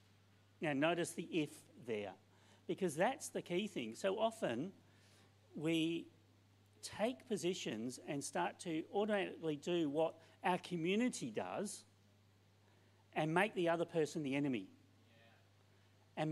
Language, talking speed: English, 120 wpm